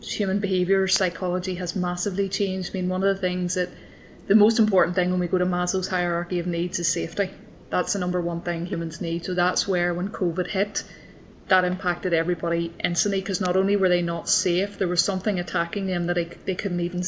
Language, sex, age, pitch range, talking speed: English, female, 20-39, 180-195 Hz, 210 wpm